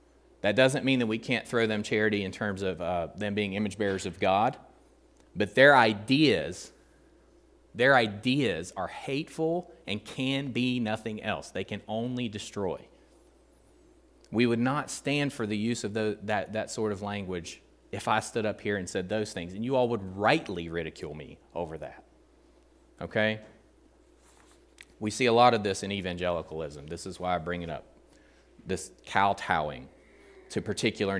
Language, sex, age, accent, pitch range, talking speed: English, male, 30-49, American, 95-115 Hz, 170 wpm